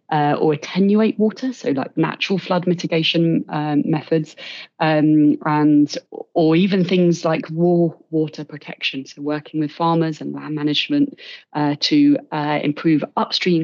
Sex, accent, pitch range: female, British, 155-190 Hz